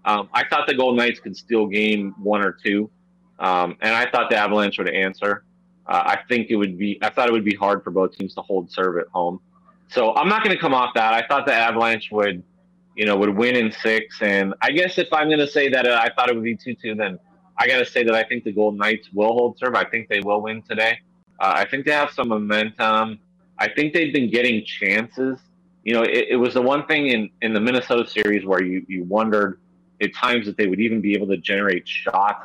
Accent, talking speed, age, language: American, 250 wpm, 30-49, English